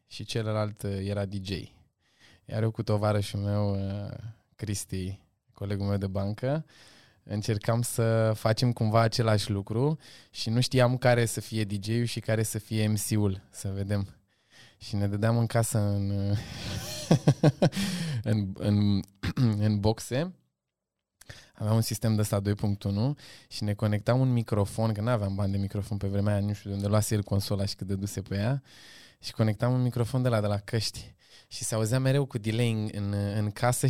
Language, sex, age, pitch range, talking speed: Romanian, male, 20-39, 100-125 Hz, 170 wpm